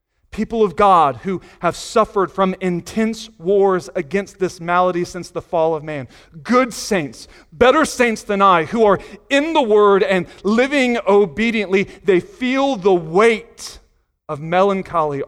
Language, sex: English, male